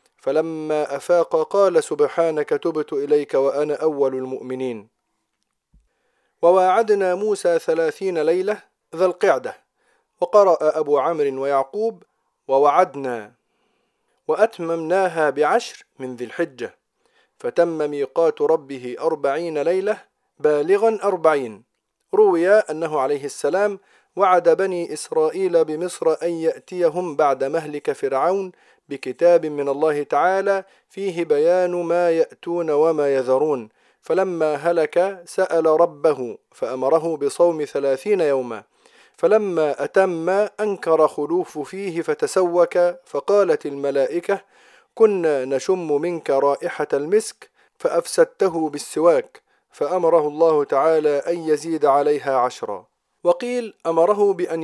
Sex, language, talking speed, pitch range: male, Arabic, 95 wpm, 150-210 Hz